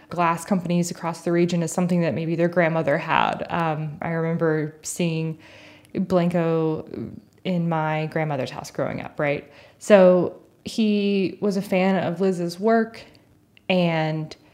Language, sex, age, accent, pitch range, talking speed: English, female, 20-39, American, 160-185 Hz, 135 wpm